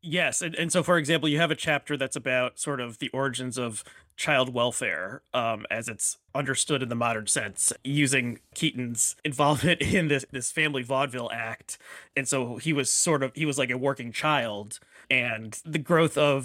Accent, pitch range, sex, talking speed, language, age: American, 120-155 Hz, male, 190 wpm, English, 30-49